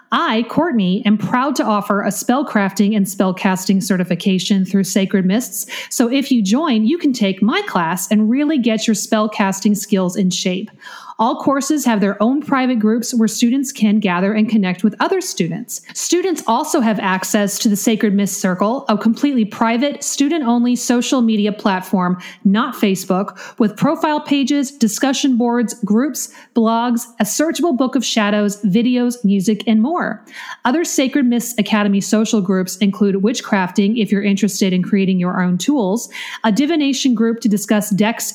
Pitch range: 205-255 Hz